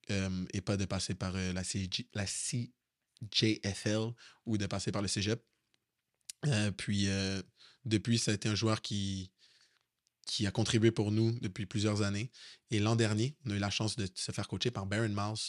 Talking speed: 190 wpm